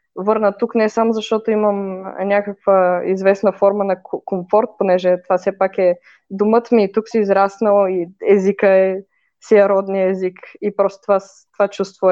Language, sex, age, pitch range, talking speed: Bulgarian, female, 20-39, 175-205 Hz, 170 wpm